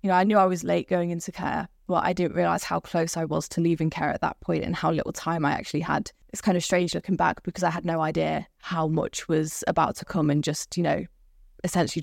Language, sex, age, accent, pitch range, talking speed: English, female, 10-29, British, 160-185 Hz, 270 wpm